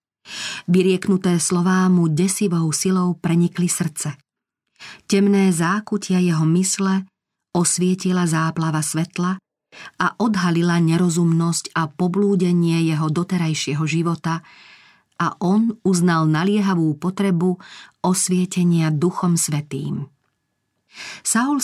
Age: 40-59